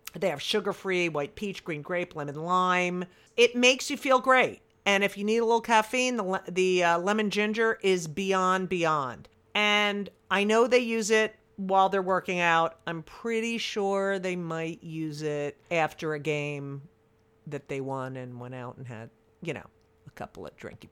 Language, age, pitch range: English, 50-69, 160-225 Hz